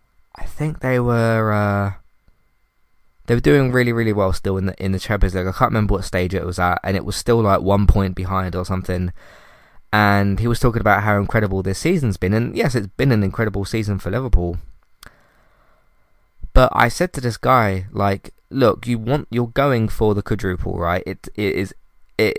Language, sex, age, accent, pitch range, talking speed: English, male, 20-39, British, 95-115 Hz, 200 wpm